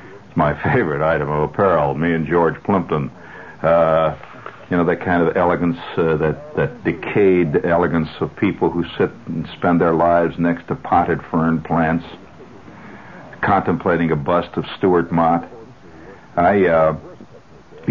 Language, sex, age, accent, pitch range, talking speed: English, male, 60-79, American, 80-105 Hz, 140 wpm